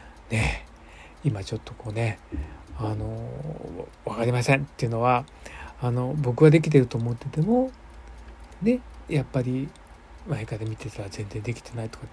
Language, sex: Japanese, male